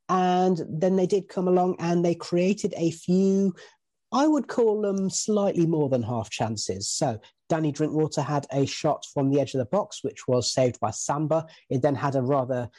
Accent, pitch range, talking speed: British, 135-180 Hz, 195 wpm